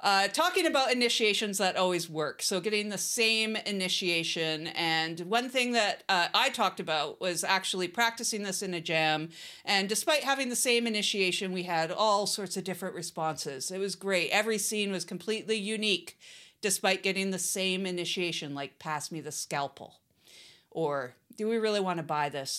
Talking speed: 175 wpm